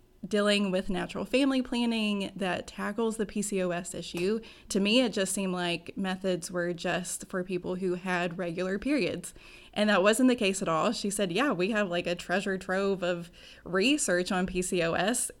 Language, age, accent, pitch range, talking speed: English, 20-39, American, 180-205 Hz, 175 wpm